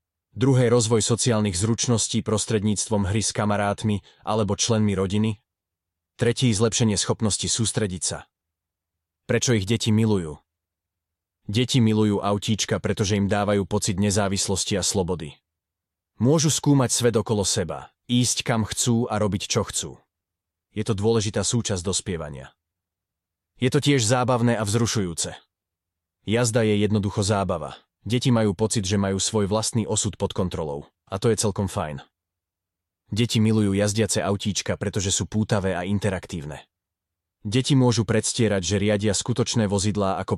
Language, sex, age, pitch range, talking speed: Slovak, male, 30-49, 90-110 Hz, 130 wpm